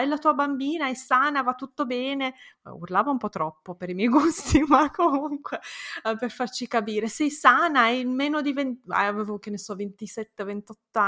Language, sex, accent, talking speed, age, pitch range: Italian, female, native, 180 wpm, 20-39, 185-245 Hz